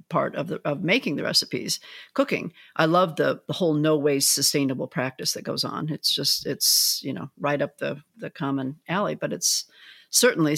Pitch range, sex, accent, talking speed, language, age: 150-205 Hz, female, American, 195 wpm, English, 50-69